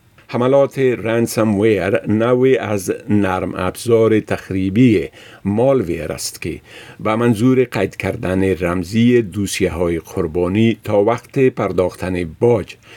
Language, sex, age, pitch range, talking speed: Persian, male, 50-69, 95-120 Hz, 100 wpm